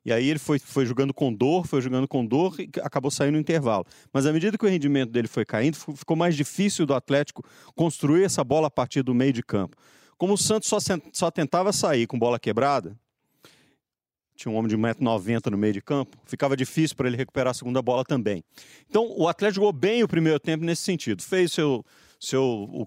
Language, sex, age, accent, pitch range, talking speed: Portuguese, male, 40-59, Brazilian, 130-185 Hz, 205 wpm